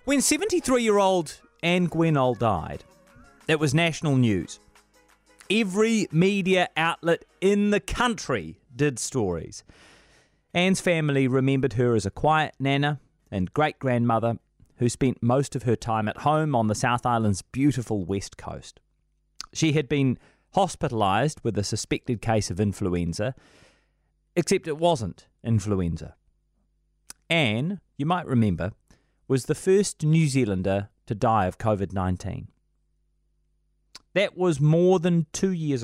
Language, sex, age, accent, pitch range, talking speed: English, male, 30-49, Australian, 110-175 Hz, 125 wpm